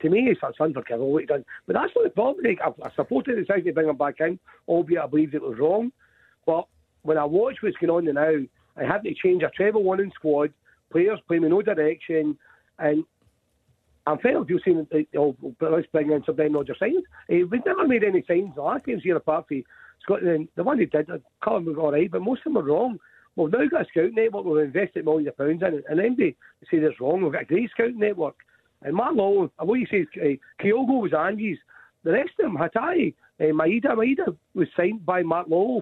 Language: English